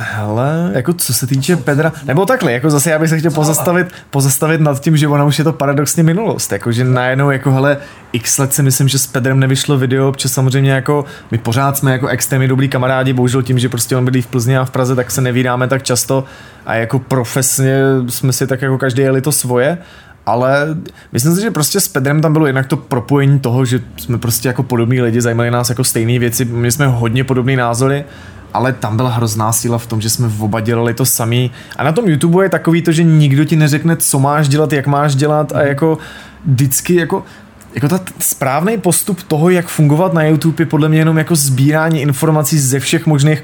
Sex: male